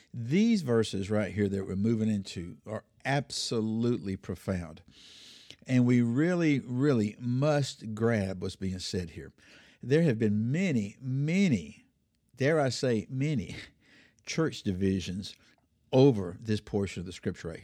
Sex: male